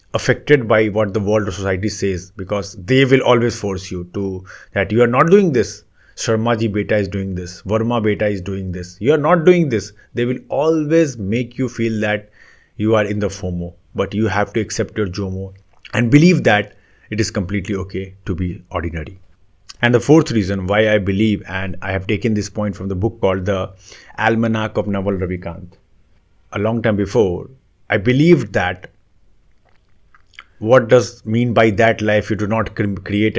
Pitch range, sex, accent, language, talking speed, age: 95-115 Hz, male, native, Hindi, 190 wpm, 30-49